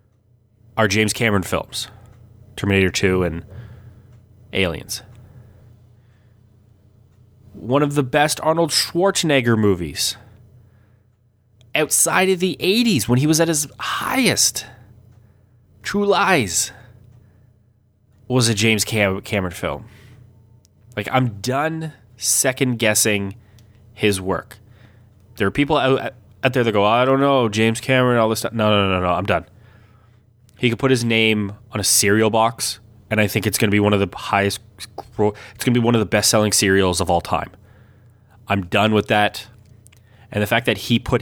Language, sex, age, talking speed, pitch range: English, male, 20-39, 150 wpm, 105-120 Hz